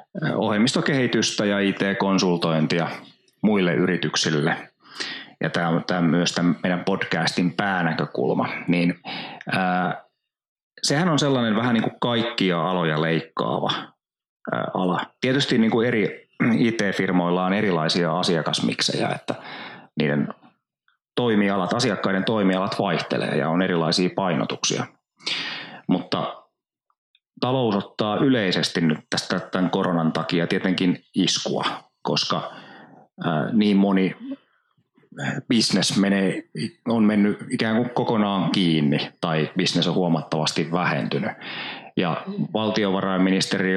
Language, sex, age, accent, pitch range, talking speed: Finnish, male, 30-49, native, 85-105 Hz, 100 wpm